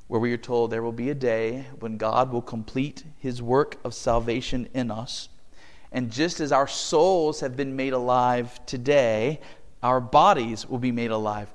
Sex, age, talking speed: male, 40-59, 180 wpm